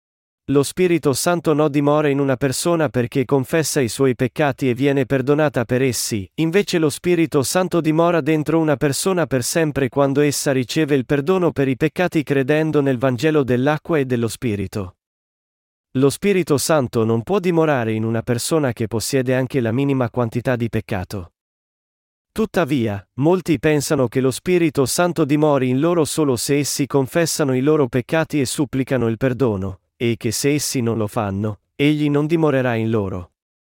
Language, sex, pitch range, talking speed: Italian, male, 125-155 Hz, 165 wpm